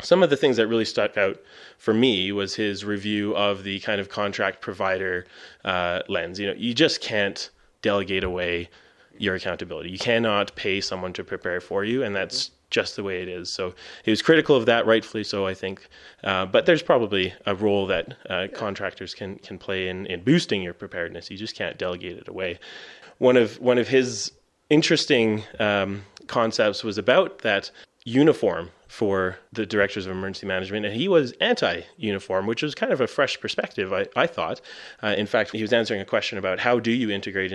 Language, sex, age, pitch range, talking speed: English, male, 20-39, 95-110 Hz, 195 wpm